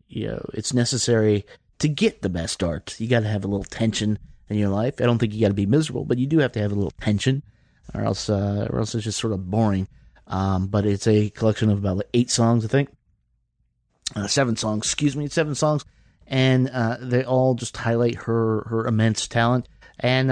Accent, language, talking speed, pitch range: American, English, 225 wpm, 100-125 Hz